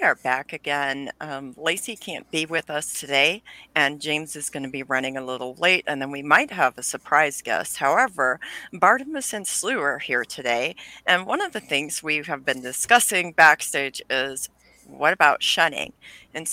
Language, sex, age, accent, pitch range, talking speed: English, female, 40-59, American, 140-185 Hz, 180 wpm